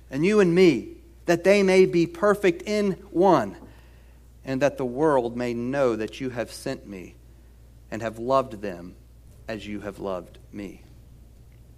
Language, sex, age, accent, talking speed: English, male, 40-59, American, 160 wpm